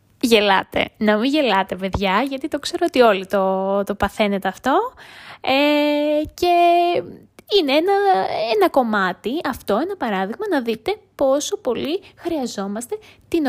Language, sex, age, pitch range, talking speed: Greek, female, 20-39, 195-290 Hz, 140 wpm